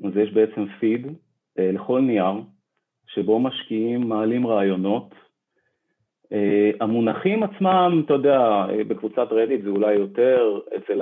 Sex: male